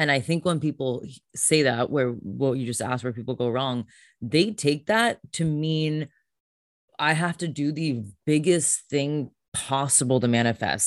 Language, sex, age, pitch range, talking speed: English, female, 20-39, 125-155 Hz, 175 wpm